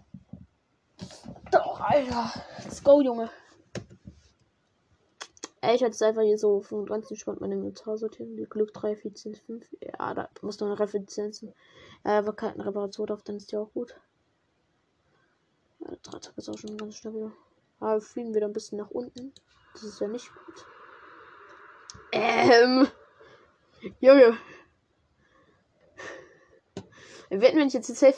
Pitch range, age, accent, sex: 210-295 Hz, 10-29, German, female